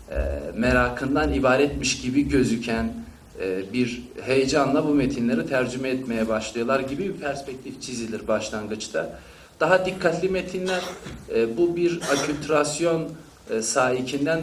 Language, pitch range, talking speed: Turkish, 110-145 Hz, 95 wpm